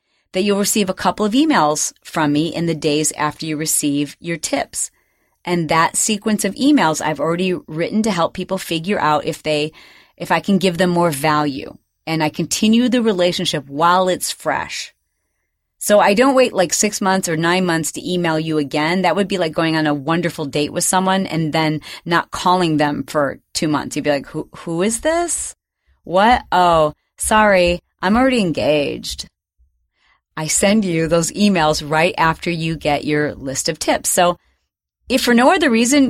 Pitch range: 155-205 Hz